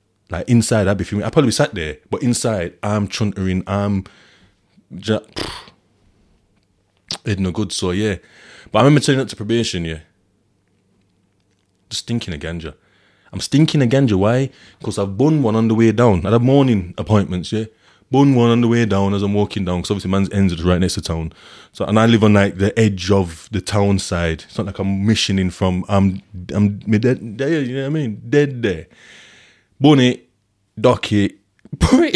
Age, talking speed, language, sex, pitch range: 20-39, 195 wpm, English, male, 95-115 Hz